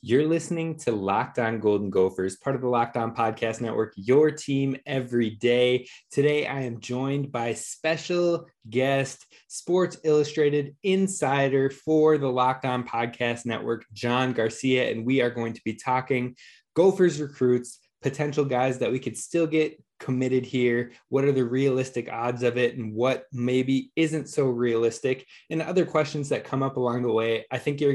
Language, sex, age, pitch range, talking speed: English, male, 20-39, 120-145 Hz, 165 wpm